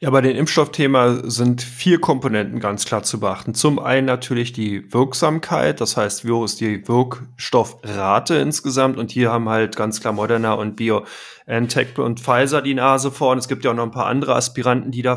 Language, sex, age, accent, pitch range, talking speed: German, male, 20-39, German, 120-140 Hz, 195 wpm